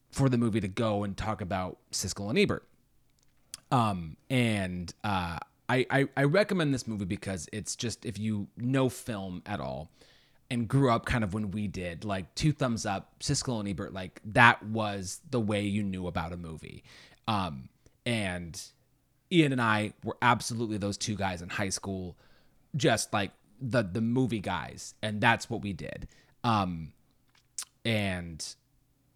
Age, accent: 30-49, American